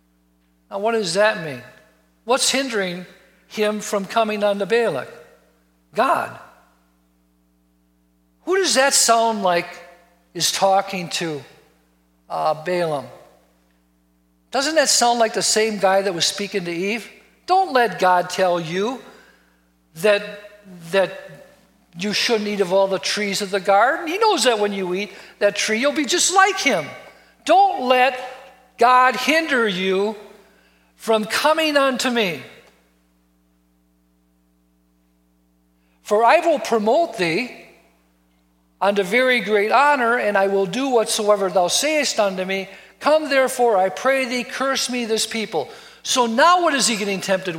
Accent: American